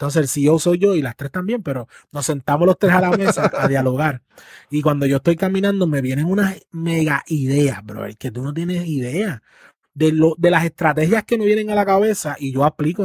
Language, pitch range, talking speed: Spanish, 140-185 Hz, 225 wpm